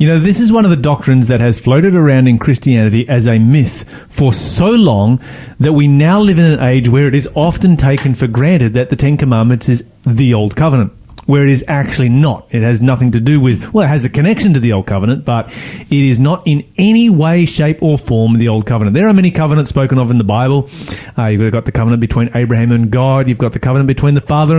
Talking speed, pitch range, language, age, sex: 245 wpm, 120-155 Hz, English, 30-49, male